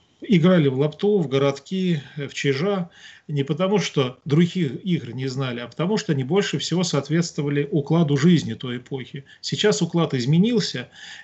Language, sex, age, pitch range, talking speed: Russian, male, 40-59, 135-170 Hz, 150 wpm